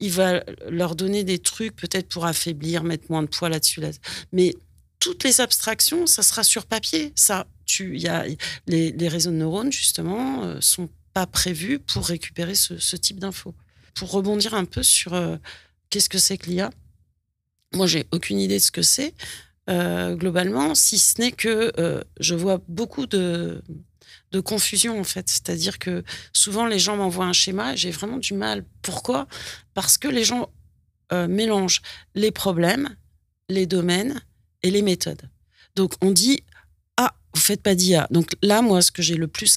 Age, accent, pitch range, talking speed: 40-59, French, 160-200 Hz, 190 wpm